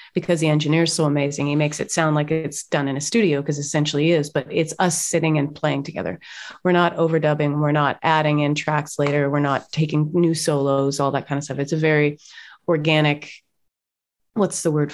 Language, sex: English, female